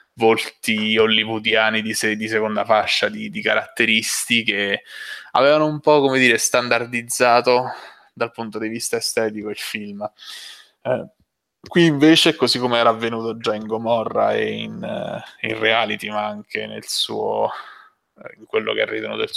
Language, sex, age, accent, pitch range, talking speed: Italian, male, 20-39, native, 110-155 Hz, 145 wpm